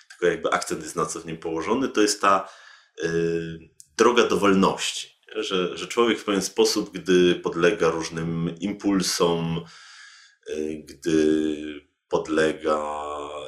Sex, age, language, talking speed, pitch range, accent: male, 30-49, Polish, 115 wpm, 80-95 Hz, native